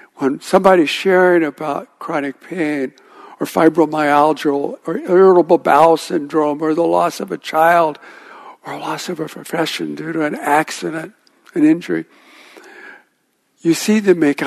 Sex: male